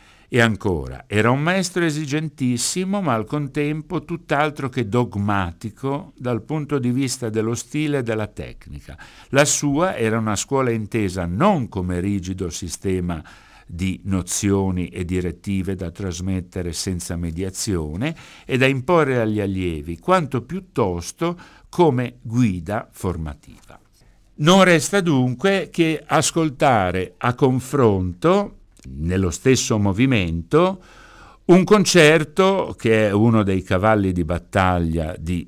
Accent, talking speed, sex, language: native, 115 wpm, male, Italian